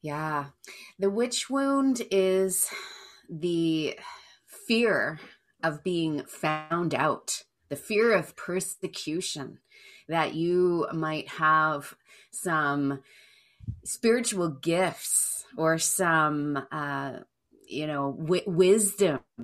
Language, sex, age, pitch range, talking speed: English, female, 30-49, 145-175 Hz, 85 wpm